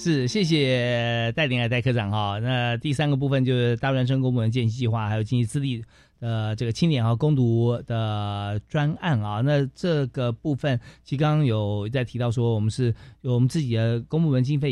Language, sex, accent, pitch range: Chinese, male, native, 115-145 Hz